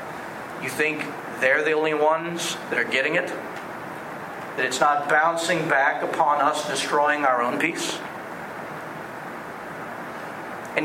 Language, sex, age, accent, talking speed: English, male, 40-59, American, 120 wpm